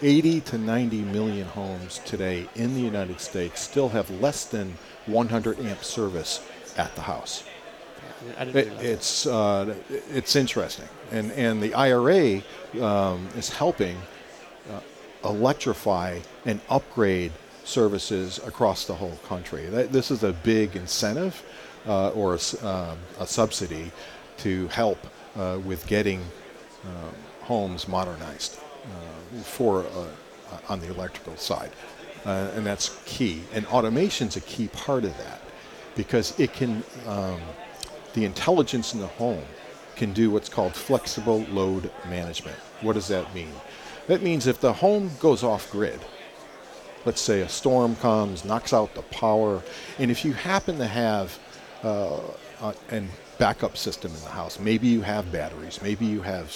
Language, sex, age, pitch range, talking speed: English, male, 50-69, 95-120 Hz, 145 wpm